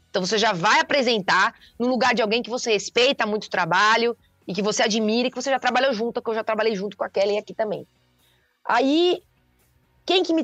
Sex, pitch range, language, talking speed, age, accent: female, 210-275 Hz, Portuguese, 225 wpm, 20-39, Brazilian